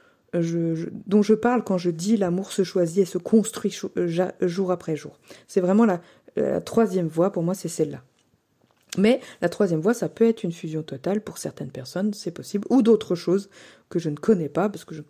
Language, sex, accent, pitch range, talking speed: French, female, French, 175-225 Hz, 205 wpm